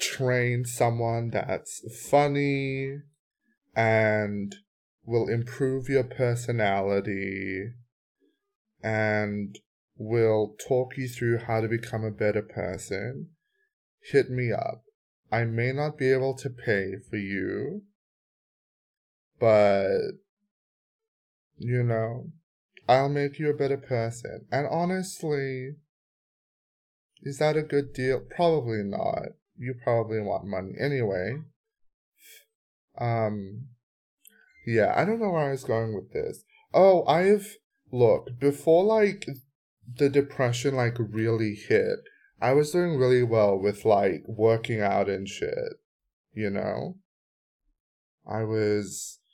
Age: 20-39